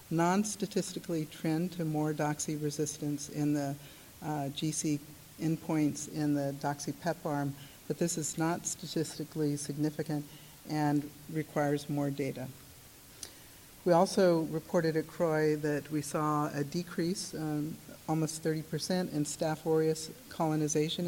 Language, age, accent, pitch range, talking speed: English, 50-69, American, 150-165 Hz, 120 wpm